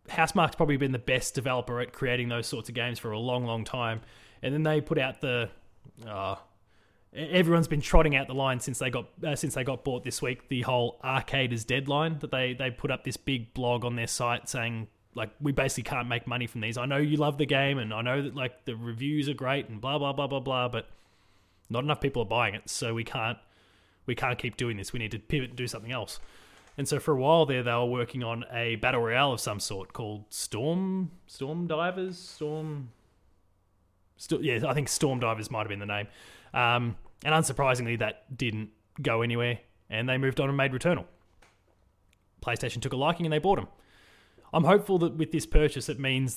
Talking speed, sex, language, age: 220 wpm, male, English, 20-39